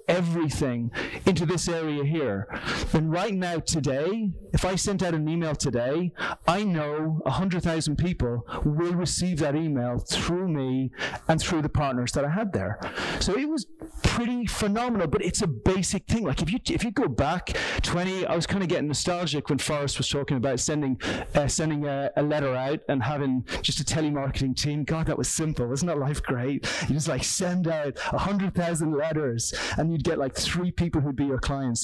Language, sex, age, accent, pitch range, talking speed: English, male, 30-49, British, 145-185 Hz, 200 wpm